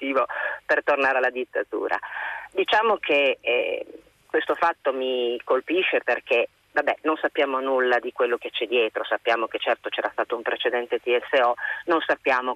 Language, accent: Italian, native